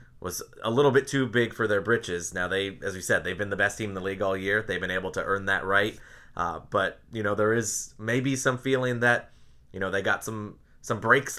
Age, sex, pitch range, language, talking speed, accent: 20-39, male, 95-120 Hz, English, 255 wpm, American